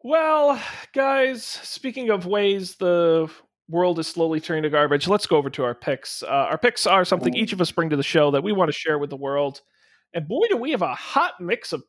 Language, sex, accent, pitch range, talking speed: English, male, American, 140-180 Hz, 235 wpm